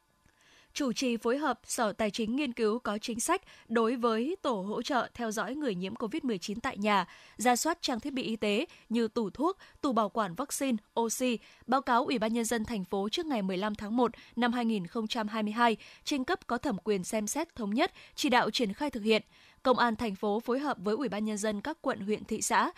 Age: 10-29